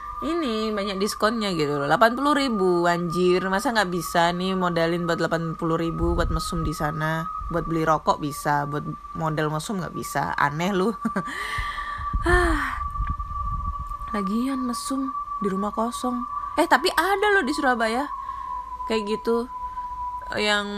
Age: 20-39